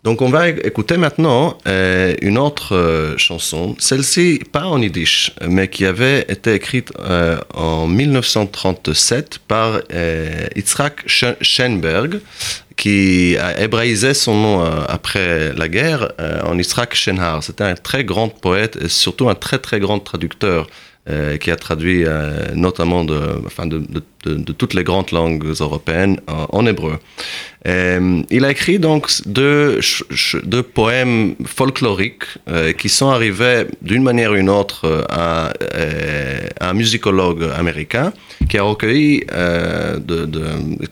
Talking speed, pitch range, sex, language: 140 wpm, 85-115 Hz, male, French